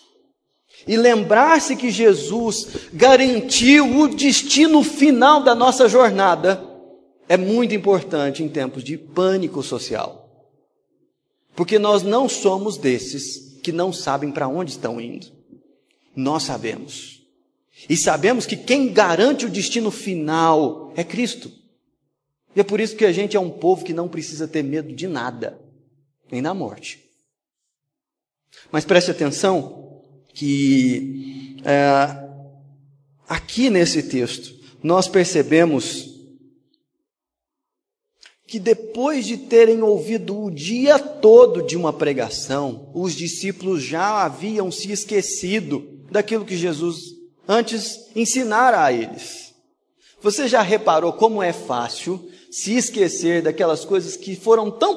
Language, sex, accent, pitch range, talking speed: Portuguese, male, Brazilian, 155-230 Hz, 120 wpm